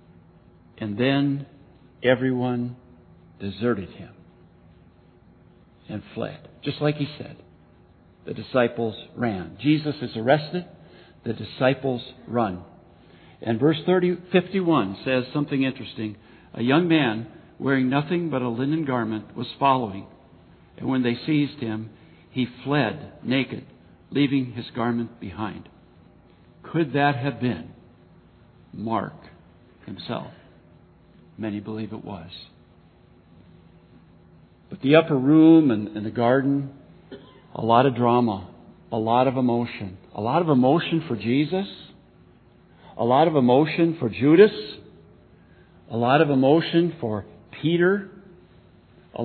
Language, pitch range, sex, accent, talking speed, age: English, 115-145 Hz, male, American, 115 wpm, 60-79